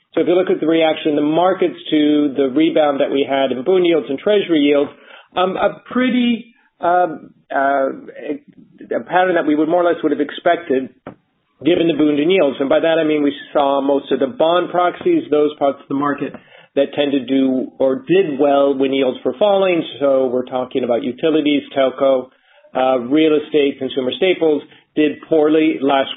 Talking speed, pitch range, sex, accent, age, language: 190 wpm, 135-165 Hz, male, American, 40-59, English